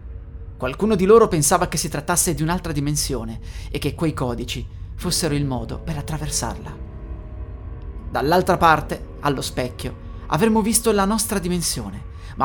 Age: 30-49